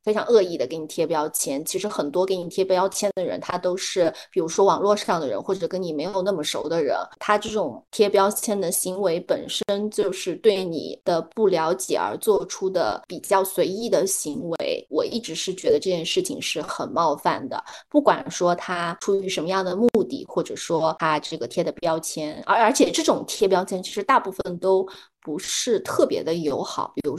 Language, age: Chinese, 20-39